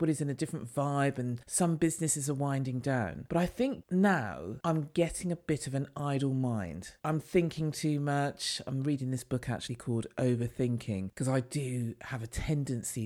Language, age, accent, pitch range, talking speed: English, 40-59, British, 125-185 Hz, 185 wpm